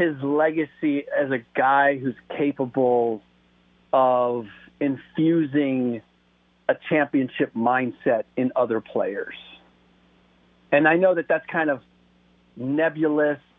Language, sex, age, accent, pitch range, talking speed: English, male, 40-59, American, 120-155 Hz, 100 wpm